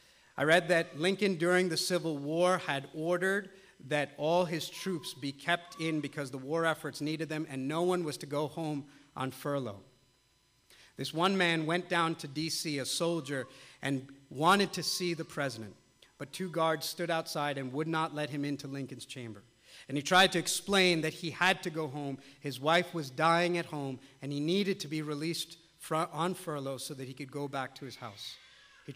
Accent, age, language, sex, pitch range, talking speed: American, 50-69, English, male, 140-170 Hz, 195 wpm